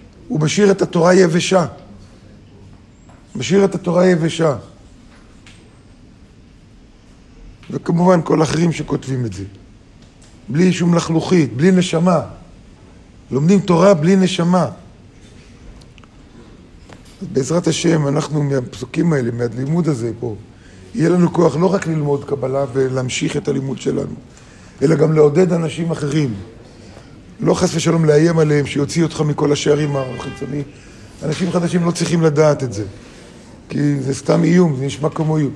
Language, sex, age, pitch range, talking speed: Hebrew, male, 50-69, 125-165 Hz, 125 wpm